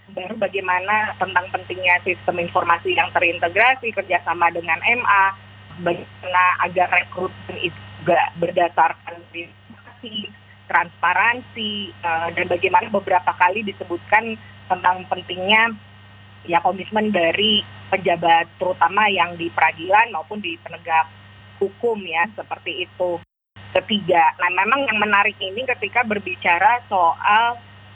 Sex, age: female, 20-39